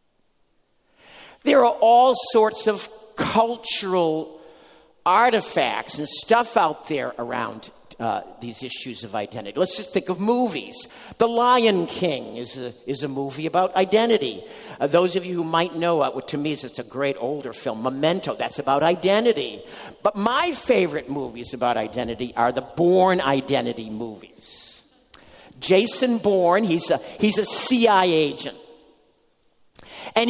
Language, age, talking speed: English, 50-69, 140 wpm